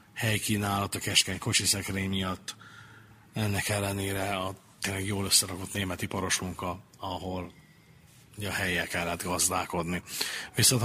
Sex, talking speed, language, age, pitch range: male, 115 wpm, Hungarian, 30-49, 90-105 Hz